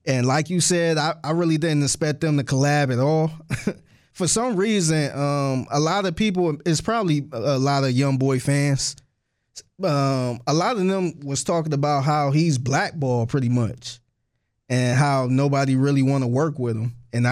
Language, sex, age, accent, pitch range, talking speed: English, male, 20-39, American, 125-160 Hz, 185 wpm